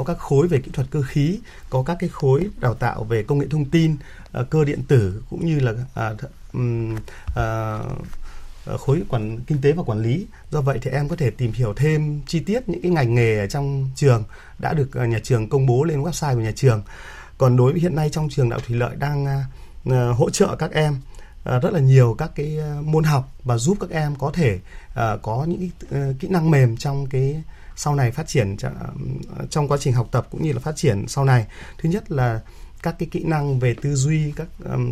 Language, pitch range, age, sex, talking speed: Vietnamese, 120-155 Hz, 30-49, male, 225 wpm